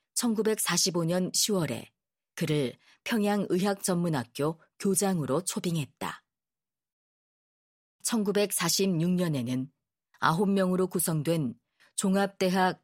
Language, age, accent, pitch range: Korean, 40-59, native, 160-205 Hz